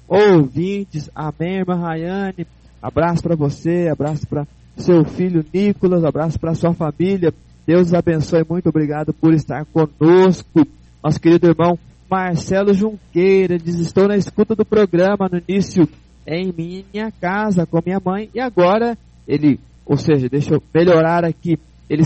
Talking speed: 140 wpm